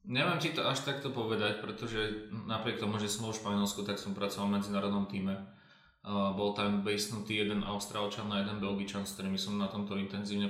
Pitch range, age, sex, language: 100-115 Hz, 20-39, male, English